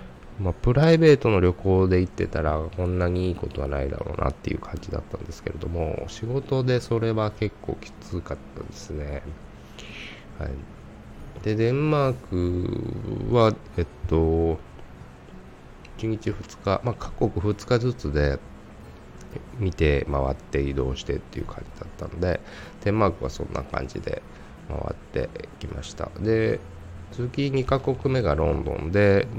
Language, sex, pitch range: Japanese, male, 75-110 Hz